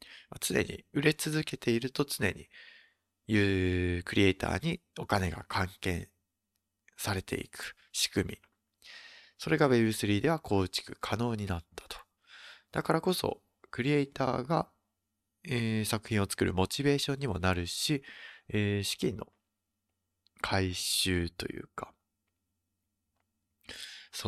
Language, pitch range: Japanese, 95-125 Hz